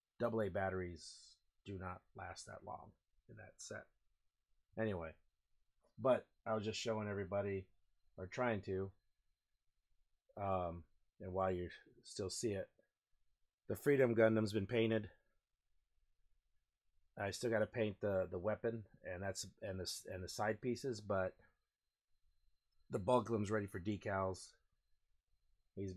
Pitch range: 80-105 Hz